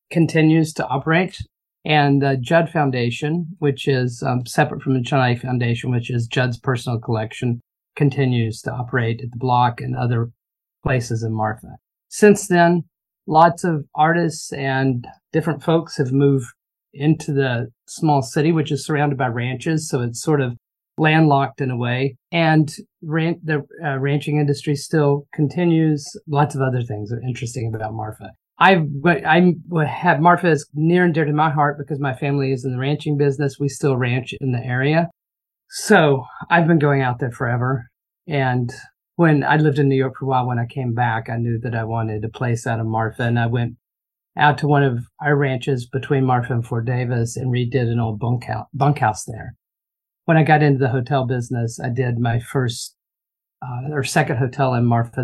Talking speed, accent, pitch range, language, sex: 180 wpm, American, 120-150 Hz, English, male